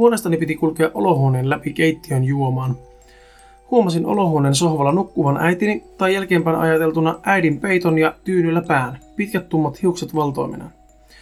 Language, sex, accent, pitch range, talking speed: Finnish, male, native, 145-170 Hz, 130 wpm